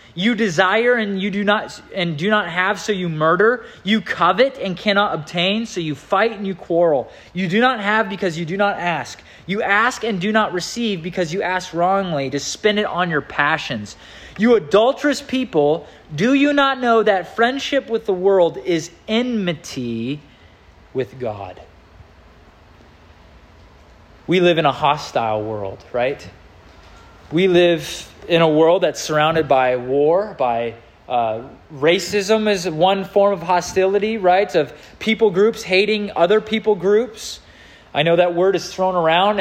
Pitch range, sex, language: 155-205 Hz, male, English